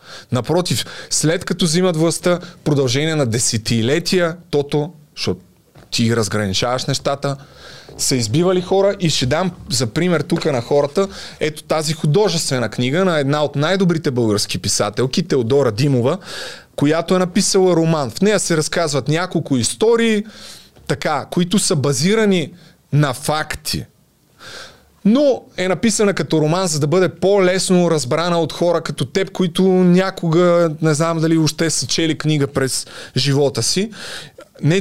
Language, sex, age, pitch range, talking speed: Bulgarian, male, 30-49, 140-180 Hz, 135 wpm